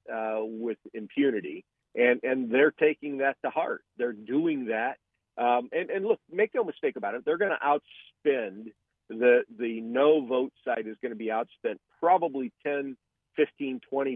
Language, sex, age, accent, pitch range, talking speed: English, male, 50-69, American, 115-150 Hz, 170 wpm